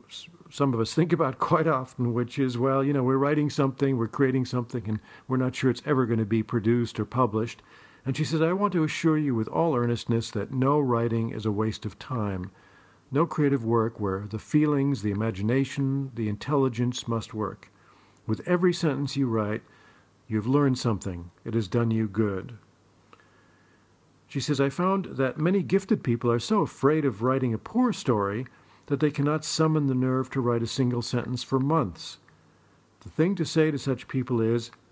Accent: American